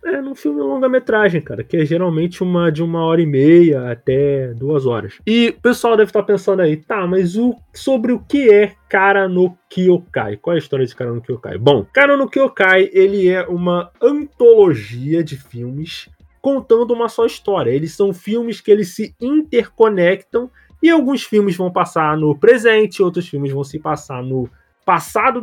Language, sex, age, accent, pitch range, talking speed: Portuguese, male, 20-39, Brazilian, 140-215 Hz, 175 wpm